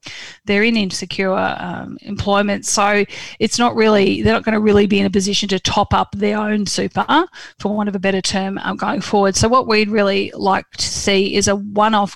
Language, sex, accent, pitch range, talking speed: English, female, Australian, 190-215 Hz, 210 wpm